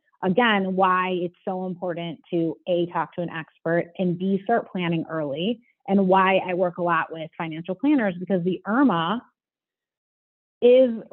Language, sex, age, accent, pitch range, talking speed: English, female, 30-49, American, 185-225 Hz, 155 wpm